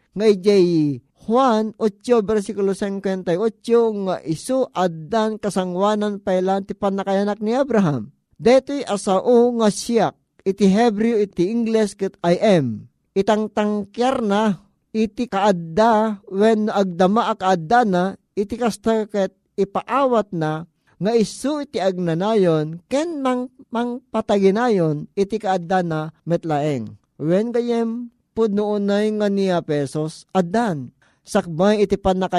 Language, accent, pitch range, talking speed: Filipino, native, 175-215 Hz, 115 wpm